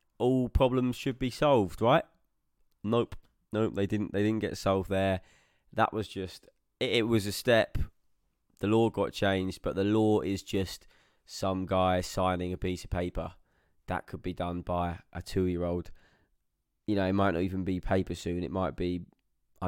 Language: English